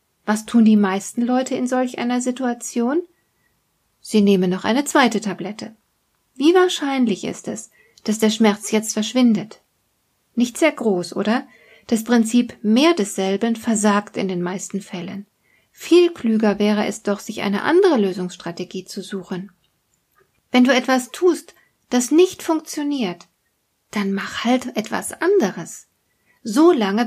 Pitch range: 205-265 Hz